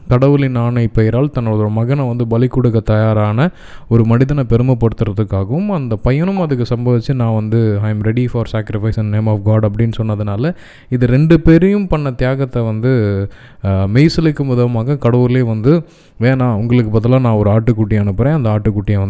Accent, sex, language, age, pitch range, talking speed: native, male, Tamil, 20-39, 110-140 Hz, 150 wpm